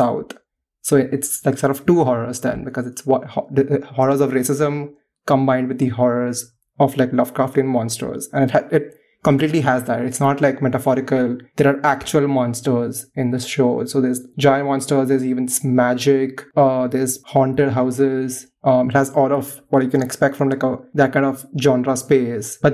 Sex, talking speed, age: male, 180 wpm, 20-39